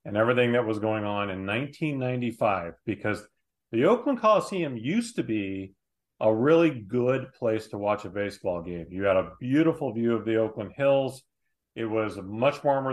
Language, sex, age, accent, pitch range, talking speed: English, male, 40-59, American, 105-130 Hz, 170 wpm